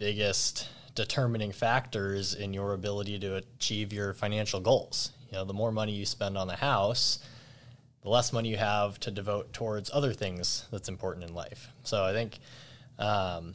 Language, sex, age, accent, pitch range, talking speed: English, male, 20-39, American, 100-125 Hz, 175 wpm